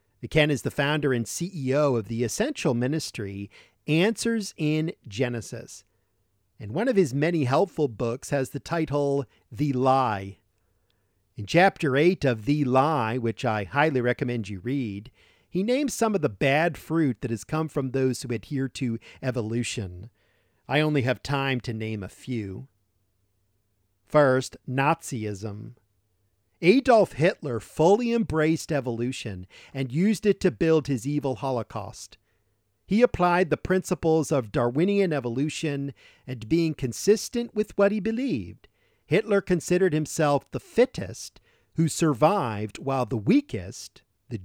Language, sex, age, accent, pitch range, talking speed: English, male, 40-59, American, 110-155 Hz, 135 wpm